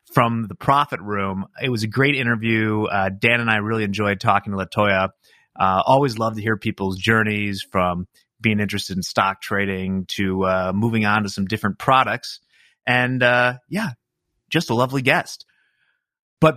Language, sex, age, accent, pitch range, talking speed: English, male, 30-49, American, 105-135 Hz, 170 wpm